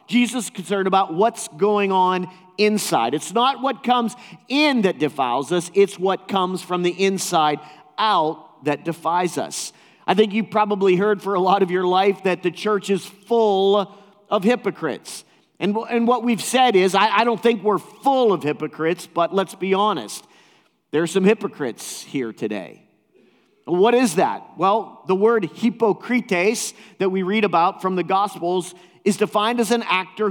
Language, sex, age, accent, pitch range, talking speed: English, male, 40-59, American, 175-220 Hz, 170 wpm